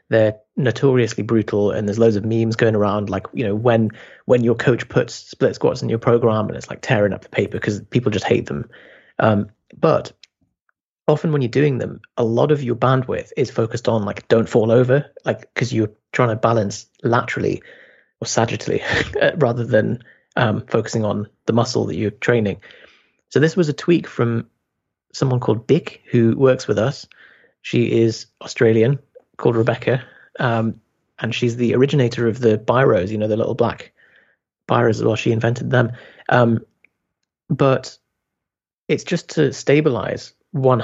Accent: British